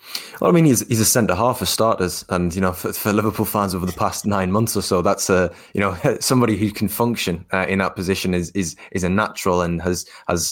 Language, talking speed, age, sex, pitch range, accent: English, 250 wpm, 20-39, male, 90-105 Hz, British